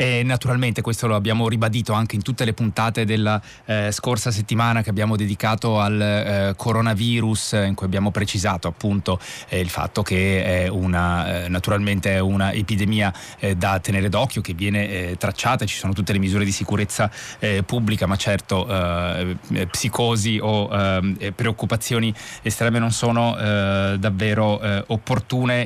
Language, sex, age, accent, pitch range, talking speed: Italian, male, 20-39, native, 100-115 Hz, 155 wpm